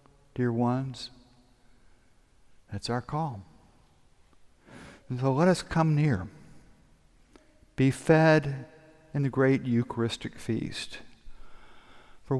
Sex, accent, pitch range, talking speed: male, American, 110-150 Hz, 90 wpm